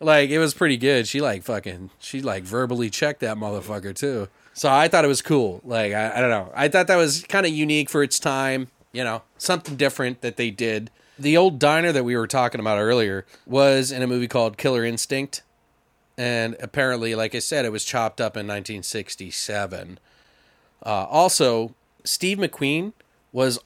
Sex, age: male, 30-49